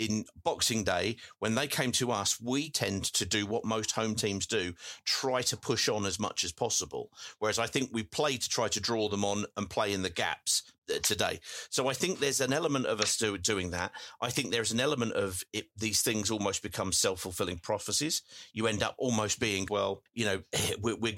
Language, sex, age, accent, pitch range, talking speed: English, male, 40-59, British, 100-120 Hz, 205 wpm